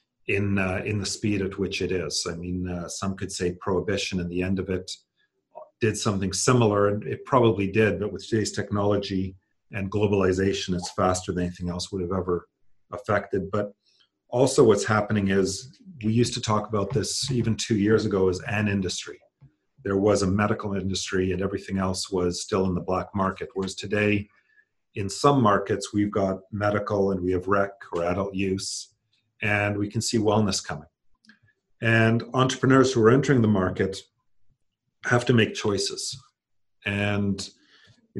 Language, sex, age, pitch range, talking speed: English, male, 40-59, 95-110 Hz, 170 wpm